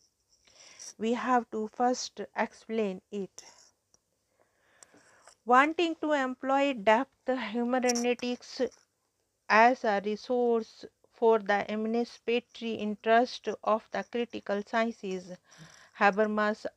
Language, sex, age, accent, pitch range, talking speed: English, female, 50-69, Indian, 205-235 Hz, 85 wpm